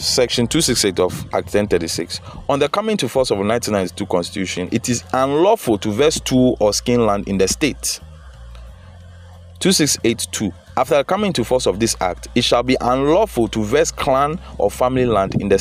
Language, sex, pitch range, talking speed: English, male, 90-120 Hz, 180 wpm